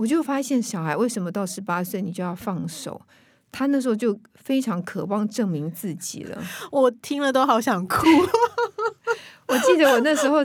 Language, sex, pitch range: Chinese, female, 180-255 Hz